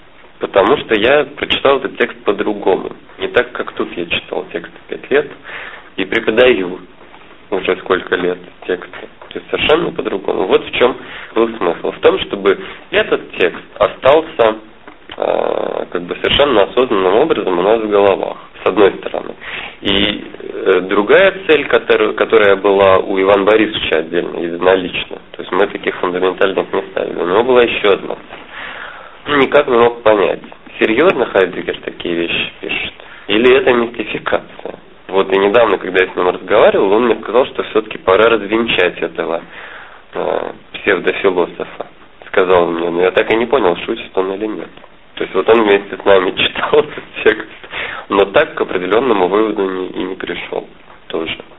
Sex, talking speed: male, 160 wpm